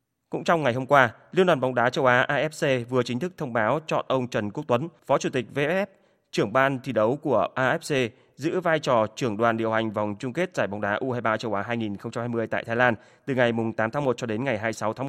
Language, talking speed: Vietnamese, 245 wpm